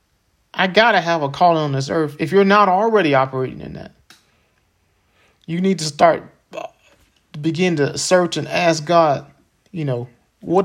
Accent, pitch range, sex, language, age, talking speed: American, 145-195 Hz, male, English, 40-59, 165 wpm